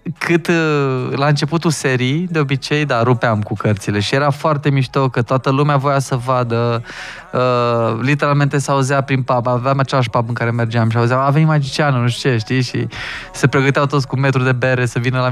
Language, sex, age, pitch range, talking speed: Romanian, male, 20-39, 125-150 Hz, 200 wpm